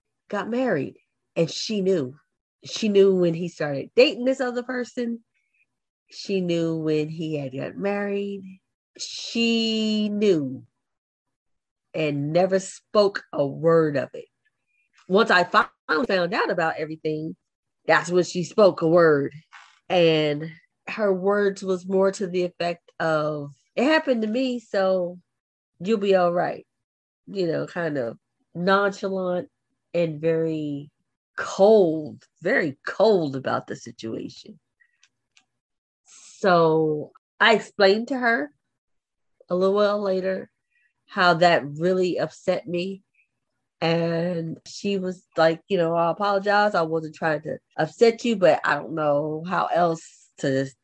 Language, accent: English, American